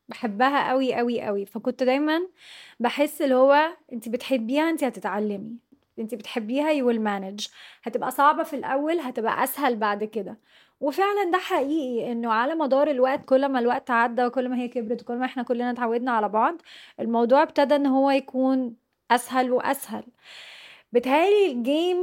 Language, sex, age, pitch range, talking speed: Arabic, female, 20-39, 235-285 Hz, 150 wpm